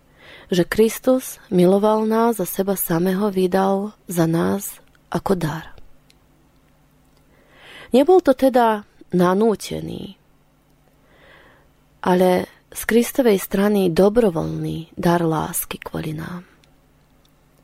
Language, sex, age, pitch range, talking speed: Slovak, female, 20-39, 170-215 Hz, 85 wpm